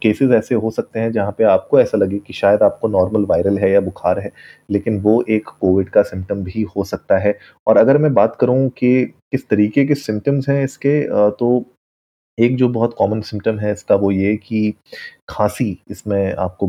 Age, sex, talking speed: 30-49, male, 200 wpm